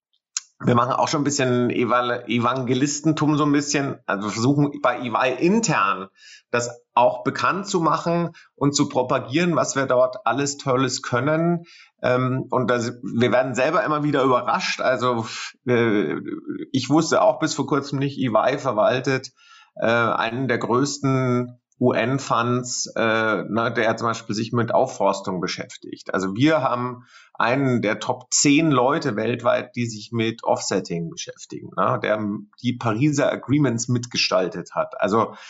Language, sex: German, male